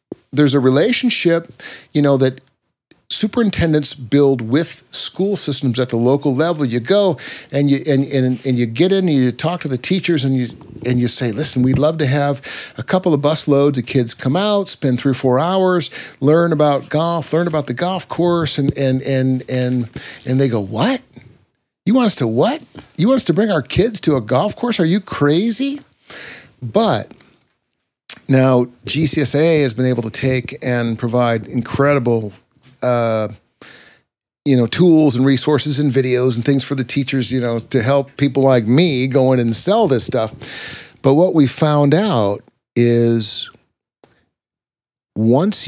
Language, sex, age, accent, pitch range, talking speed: English, male, 50-69, American, 125-160 Hz, 175 wpm